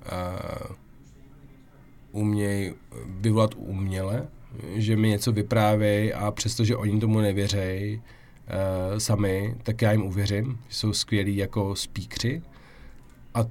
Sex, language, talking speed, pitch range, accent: male, Czech, 115 wpm, 100-120 Hz, native